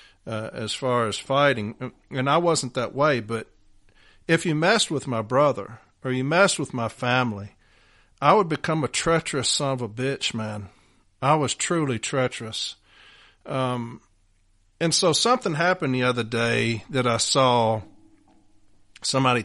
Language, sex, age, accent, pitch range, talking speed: English, male, 50-69, American, 110-135 Hz, 150 wpm